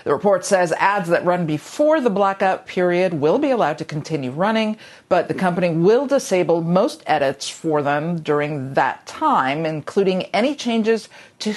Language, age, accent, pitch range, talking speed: English, 50-69, American, 160-205 Hz, 165 wpm